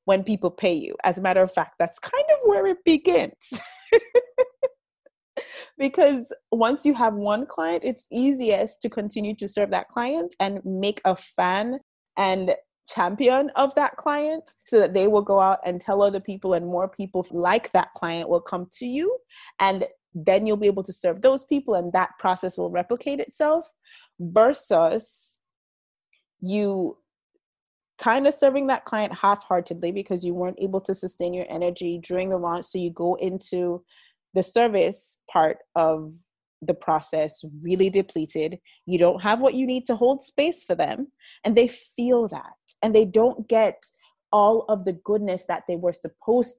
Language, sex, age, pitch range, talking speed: English, female, 20-39, 180-260 Hz, 170 wpm